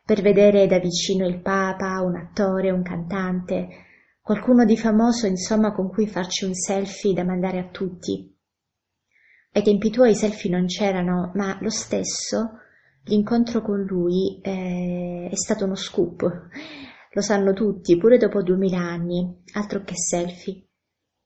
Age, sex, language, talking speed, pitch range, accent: 20-39, female, Italian, 145 wpm, 175-205 Hz, native